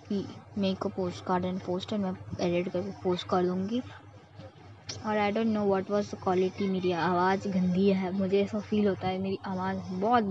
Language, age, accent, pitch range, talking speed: Hindi, 20-39, native, 135-205 Hz, 190 wpm